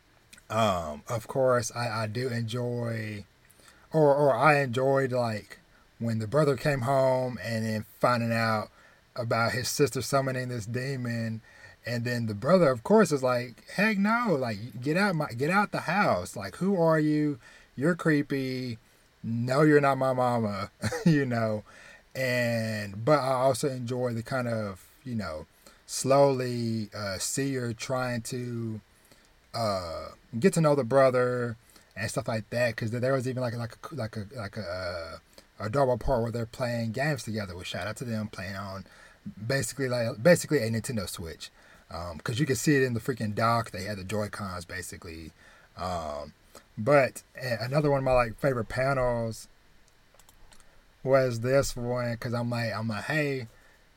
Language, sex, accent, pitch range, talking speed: English, male, American, 110-135 Hz, 170 wpm